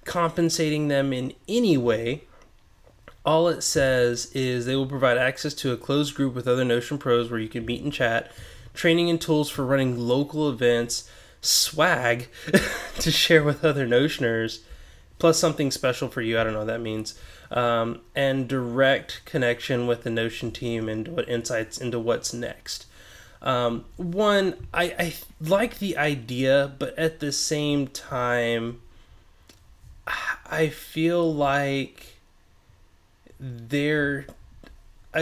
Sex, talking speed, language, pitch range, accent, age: male, 135 wpm, English, 115-150 Hz, American, 20-39